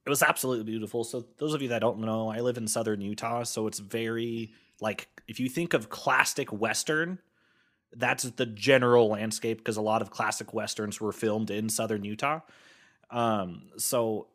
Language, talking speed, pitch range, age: English, 180 wpm, 110-135 Hz, 30-49